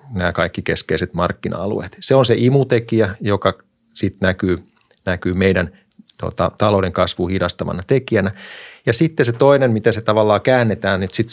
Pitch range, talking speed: 95-120 Hz, 155 wpm